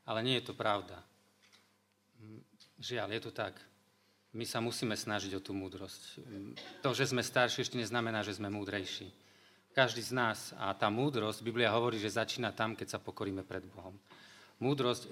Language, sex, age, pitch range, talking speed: Slovak, male, 40-59, 110-145 Hz, 165 wpm